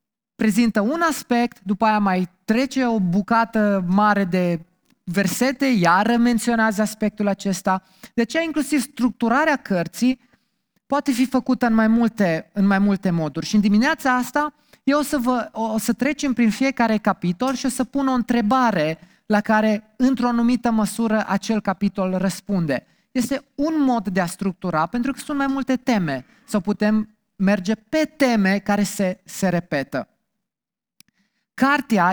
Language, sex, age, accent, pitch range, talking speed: Romanian, male, 20-39, native, 190-240 Hz, 150 wpm